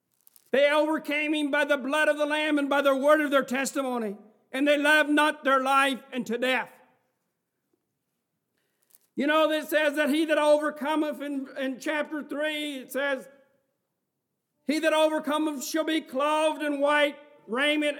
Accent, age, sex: American, 60-79, male